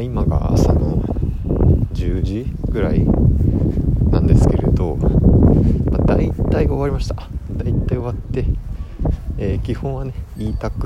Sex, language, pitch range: male, Japanese, 85-115 Hz